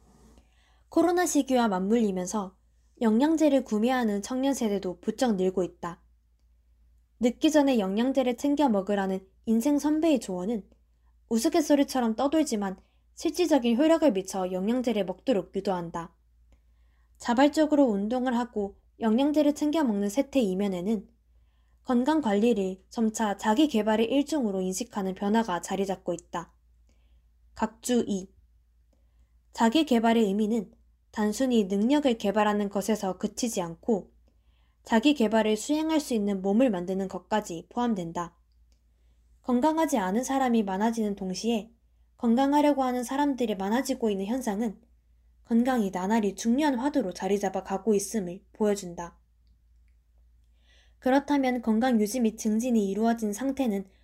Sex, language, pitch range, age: female, Korean, 180-250 Hz, 20-39